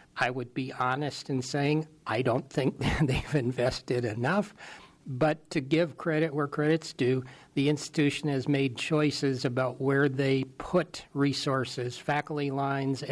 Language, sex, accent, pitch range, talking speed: English, male, American, 130-150 Hz, 140 wpm